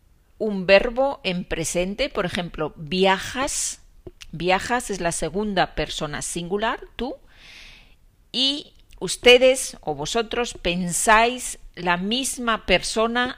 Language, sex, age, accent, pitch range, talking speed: Spanish, female, 40-59, Spanish, 160-230 Hz, 100 wpm